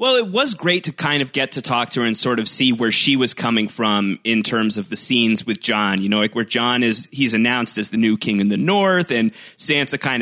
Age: 30-49